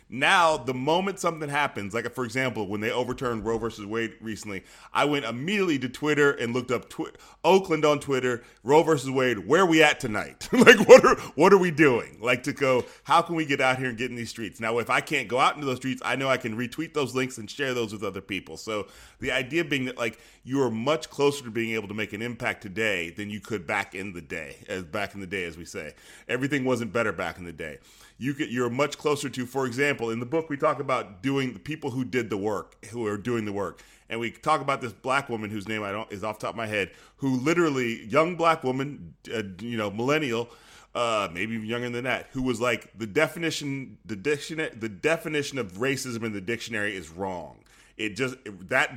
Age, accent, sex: 30-49, American, male